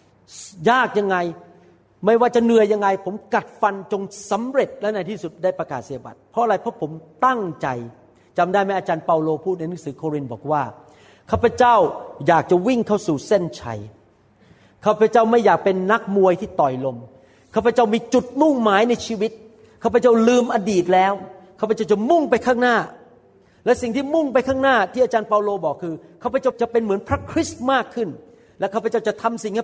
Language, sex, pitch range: Thai, male, 170-240 Hz